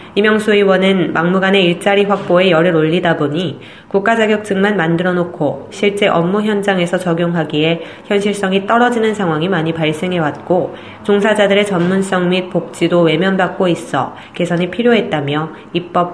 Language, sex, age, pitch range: Korean, female, 20-39, 170-205 Hz